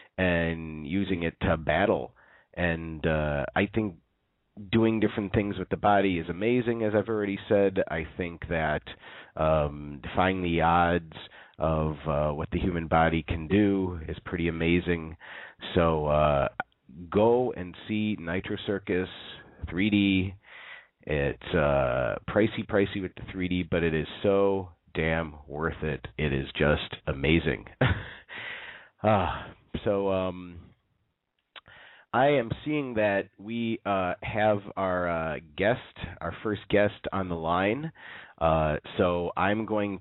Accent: American